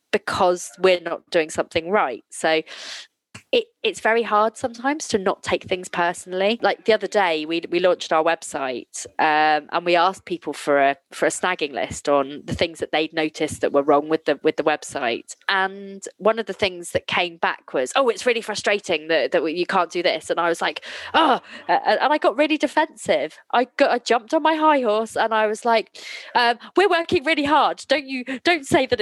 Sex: female